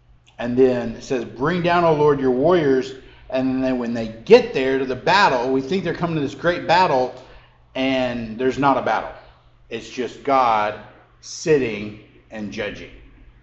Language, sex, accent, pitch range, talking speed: English, male, American, 120-155 Hz, 170 wpm